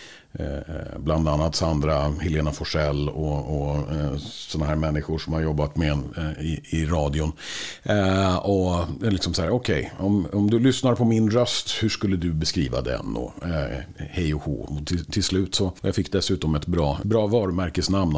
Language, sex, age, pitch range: Swedish, male, 50-69, 75-95 Hz